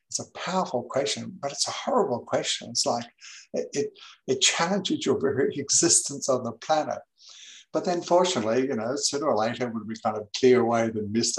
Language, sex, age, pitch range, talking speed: English, male, 60-79, 115-135 Hz, 190 wpm